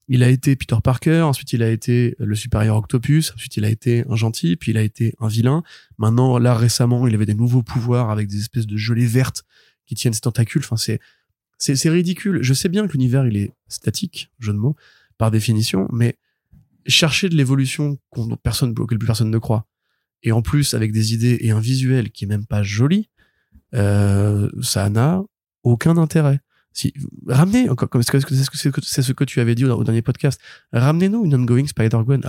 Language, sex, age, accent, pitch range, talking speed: French, male, 20-39, French, 110-140 Hz, 205 wpm